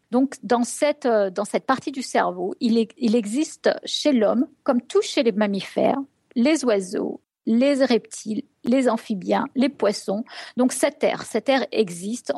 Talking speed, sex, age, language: 160 wpm, female, 50-69, French